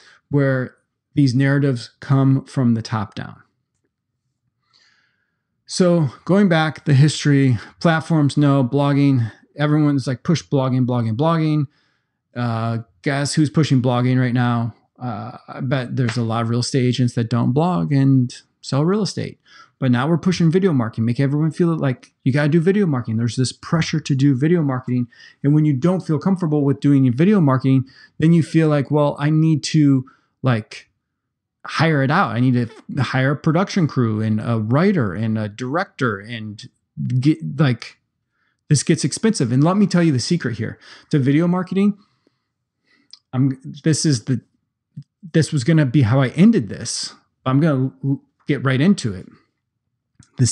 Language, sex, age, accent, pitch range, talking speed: English, male, 30-49, American, 125-155 Hz, 170 wpm